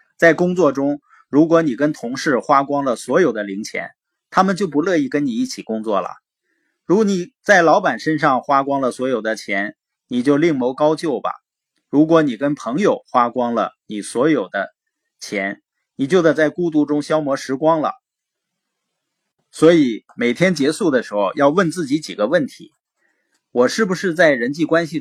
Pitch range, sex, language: 135-185 Hz, male, Chinese